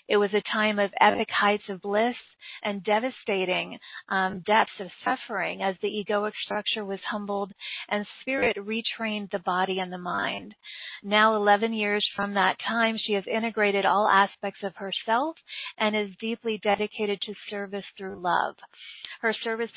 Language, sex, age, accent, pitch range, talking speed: English, female, 30-49, American, 200-230 Hz, 160 wpm